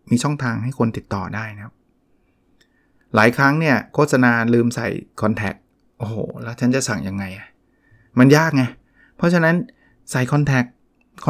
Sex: male